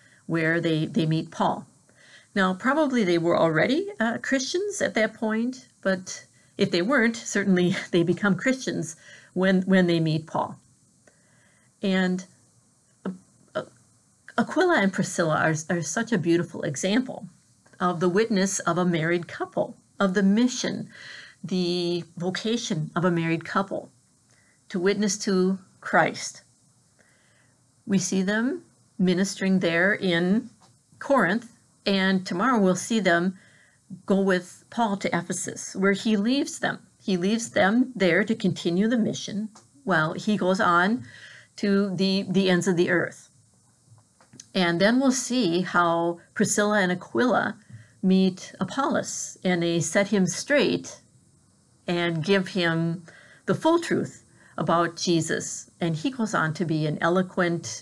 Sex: female